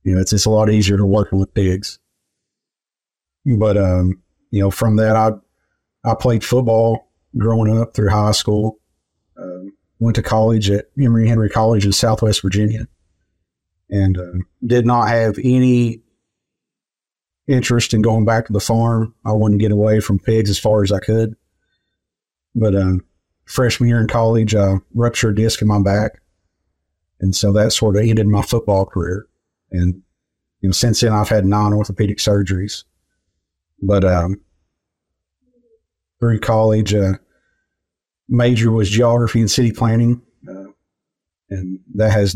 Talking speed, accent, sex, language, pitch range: 155 wpm, American, male, English, 95-115 Hz